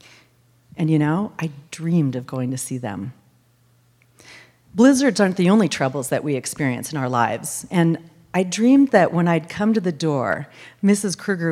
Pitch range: 140-215 Hz